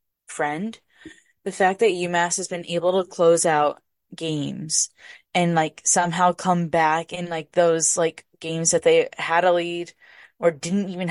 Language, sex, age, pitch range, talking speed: English, female, 10-29, 160-185 Hz, 160 wpm